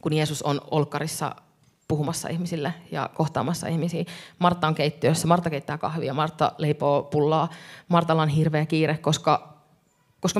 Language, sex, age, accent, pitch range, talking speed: Finnish, female, 30-49, native, 150-175 Hz, 140 wpm